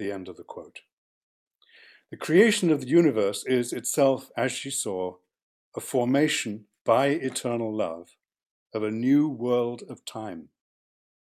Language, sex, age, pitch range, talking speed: English, male, 60-79, 110-135 Hz, 140 wpm